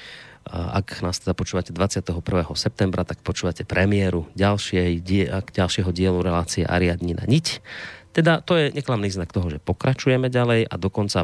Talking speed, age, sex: 145 wpm, 30-49, male